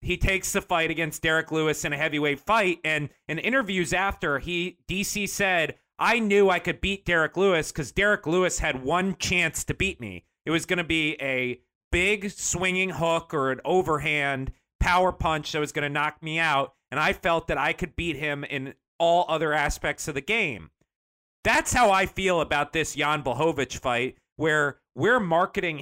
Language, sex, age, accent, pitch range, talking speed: English, male, 30-49, American, 145-185 Hz, 190 wpm